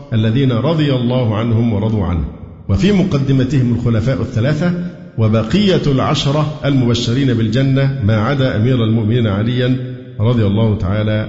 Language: Arabic